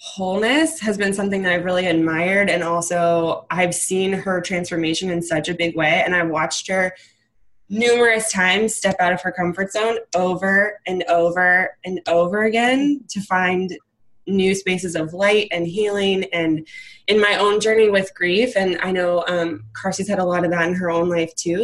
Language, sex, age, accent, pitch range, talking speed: English, female, 20-39, American, 170-205 Hz, 185 wpm